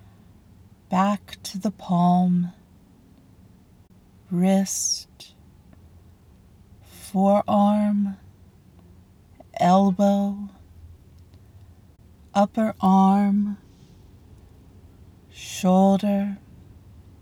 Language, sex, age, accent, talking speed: English, female, 40-59, American, 35 wpm